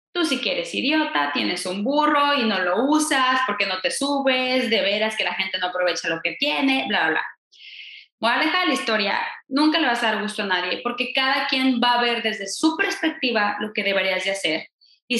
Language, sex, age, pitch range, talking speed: Spanish, female, 20-39, 215-290 Hz, 215 wpm